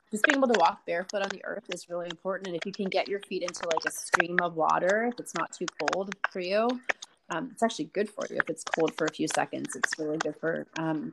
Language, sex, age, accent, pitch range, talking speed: English, female, 30-49, American, 165-200 Hz, 270 wpm